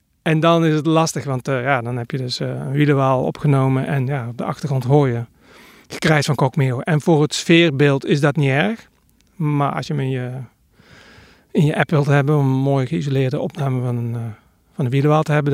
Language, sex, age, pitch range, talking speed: Dutch, male, 40-59, 130-165 Hz, 220 wpm